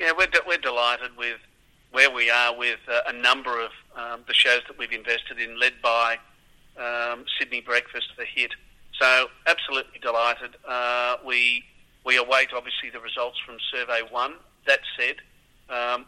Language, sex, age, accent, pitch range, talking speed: English, male, 40-59, Australian, 120-130 Hz, 165 wpm